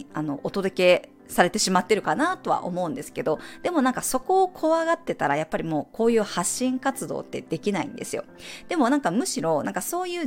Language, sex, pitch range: Japanese, female, 170-285 Hz